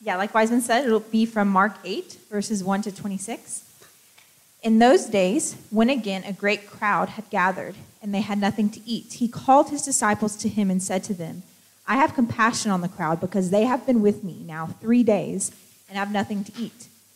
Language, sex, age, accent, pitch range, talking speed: English, female, 20-39, American, 190-235 Hz, 205 wpm